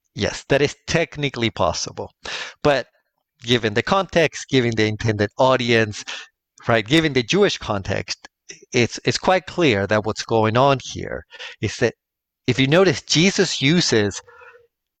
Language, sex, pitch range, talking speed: English, male, 115-145 Hz, 135 wpm